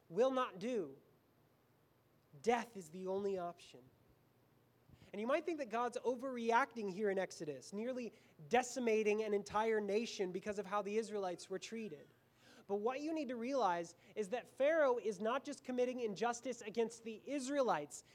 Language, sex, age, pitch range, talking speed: English, male, 20-39, 195-255 Hz, 155 wpm